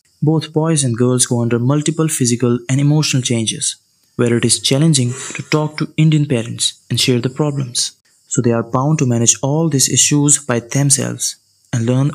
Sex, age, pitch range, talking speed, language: male, 20-39, 120-145 Hz, 185 wpm, Hindi